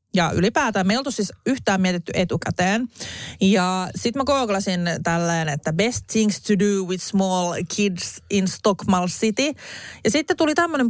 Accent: native